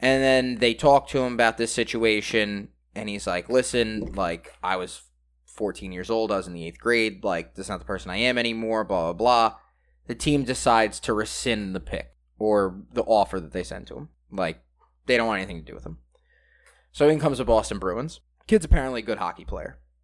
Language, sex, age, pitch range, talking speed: English, male, 20-39, 85-120 Hz, 220 wpm